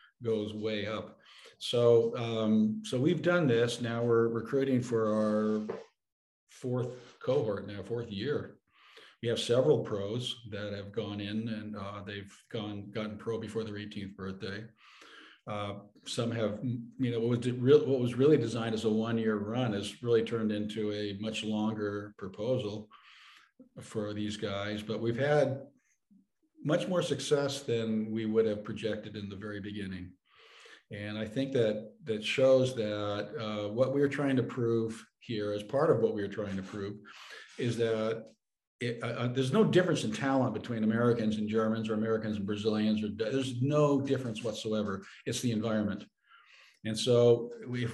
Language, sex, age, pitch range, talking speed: English, male, 50-69, 105-125 Hz, 165 wpm